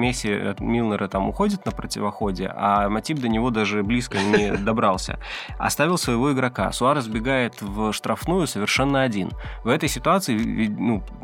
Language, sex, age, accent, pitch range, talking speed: Russian, male, 20-39, native, 105-120 Hz, 145 wpm